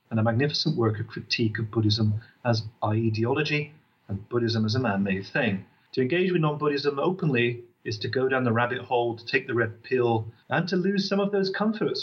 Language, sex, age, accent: English, male, 30-49, British